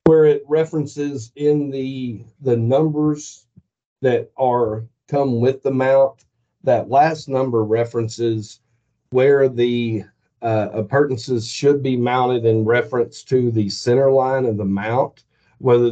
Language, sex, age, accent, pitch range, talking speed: English, male, 40-59, American, 115-135 Hz, 130 wpm